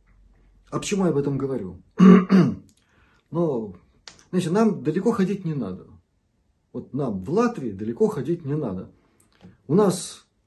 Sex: male